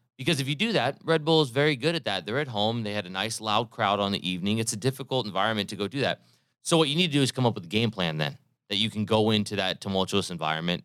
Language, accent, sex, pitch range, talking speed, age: English, American, male, 100-125 Hz, 300 wpm, 30-49